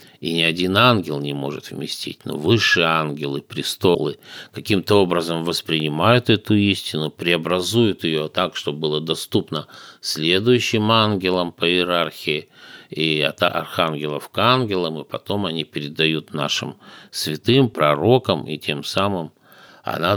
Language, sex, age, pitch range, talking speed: Russian, male, 50-69, 75-100 Hz, 125 wpm